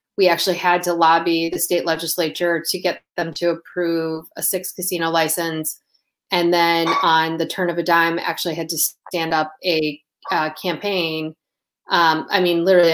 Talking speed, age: 170 wpm, 30-49